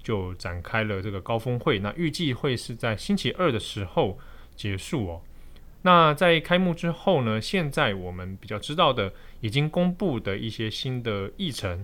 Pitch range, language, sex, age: 100-145 Hz, Chinese, male, 20-39